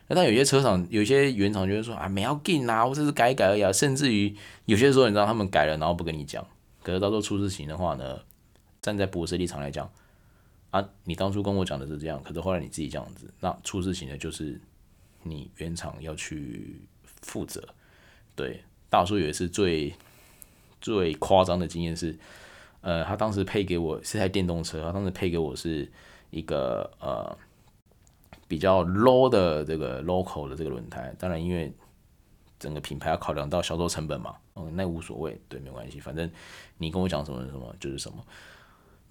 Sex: male